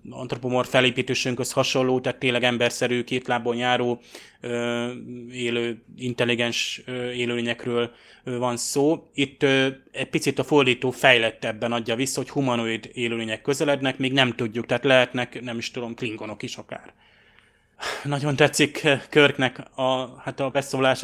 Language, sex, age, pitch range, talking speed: Hungarian, male, 20-39, 120-135 Hz, 130 wpm